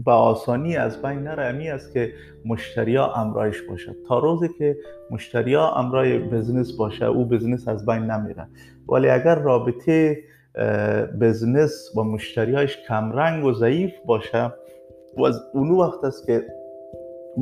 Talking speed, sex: 140 wpm, male